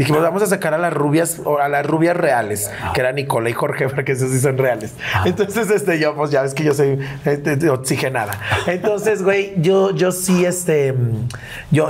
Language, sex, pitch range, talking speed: Spanish, male, 125-175 Hz, 205 wpm